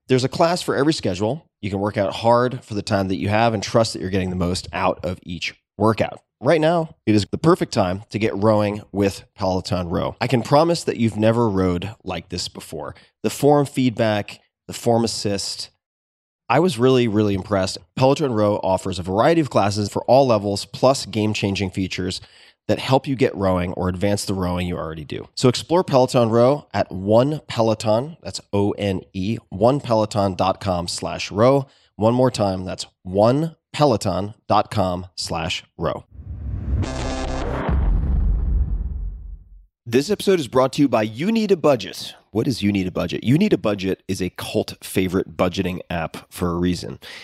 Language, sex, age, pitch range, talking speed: English, male, 20-39, 90-120 Hz, 175 wpm